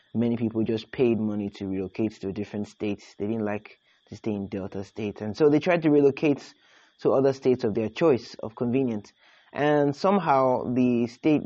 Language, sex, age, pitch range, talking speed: English, male, 20-39, 110-130 Hz, 190 wpm